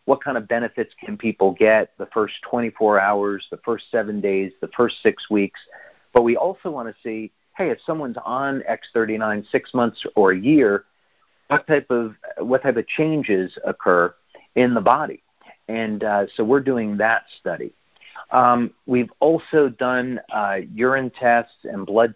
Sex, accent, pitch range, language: male, American, 105-120 Hz, English